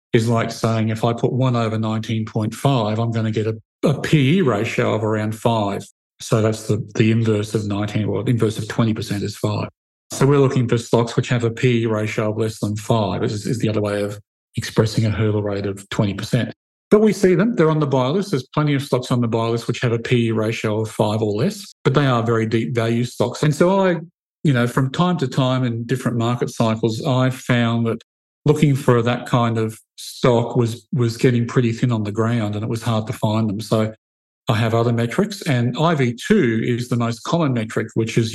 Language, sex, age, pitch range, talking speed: English, male, 50-69, 110-135 Hz, 225 wpm